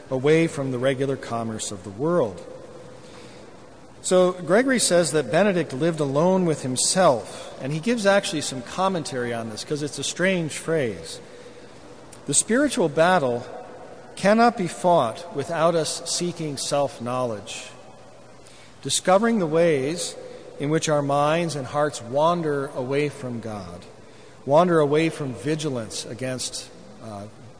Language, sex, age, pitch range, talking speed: English, male, 50-69, 120-165 Hz, 130 wpm